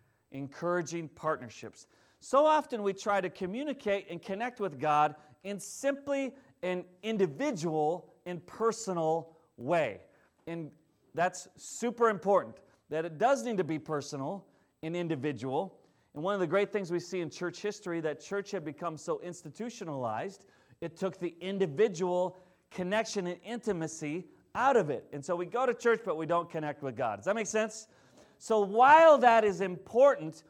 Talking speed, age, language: 155 wpm, 30-49, English